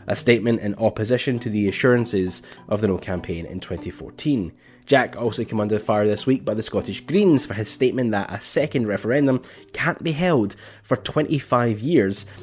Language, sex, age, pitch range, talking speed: English, male, 10-29, 100-130 Hz, 180 wpm